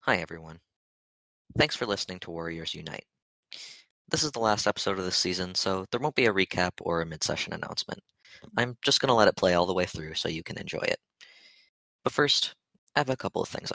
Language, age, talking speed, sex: English, 20-39, 220 wpm, male